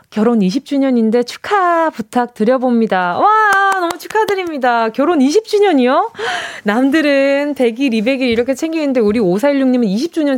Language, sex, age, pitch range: Korean, female, 20-39, 205-300 Hz